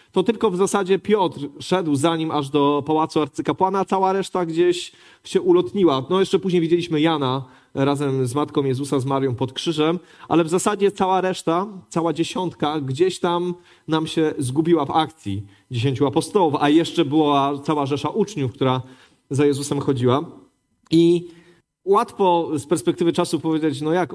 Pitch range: 140-180 Hz